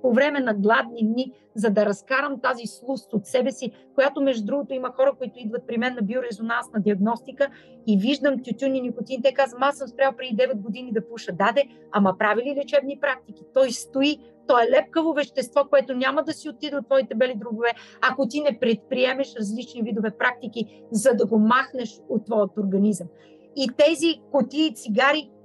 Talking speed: 185 wpm